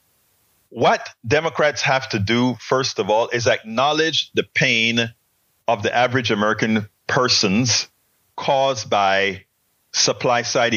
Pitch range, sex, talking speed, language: 105-135 Hz, male, 110 wpm, English